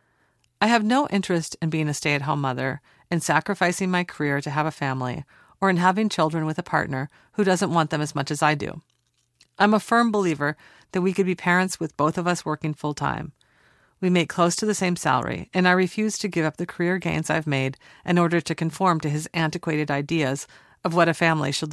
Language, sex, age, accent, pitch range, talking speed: English, female, 40-59, American, 150-190 Hz, 220 wpm